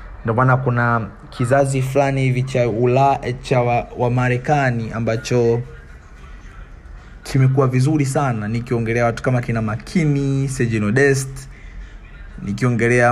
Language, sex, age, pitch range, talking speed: Swahili, male, 20-39, 115-135 Hz, 100 wpm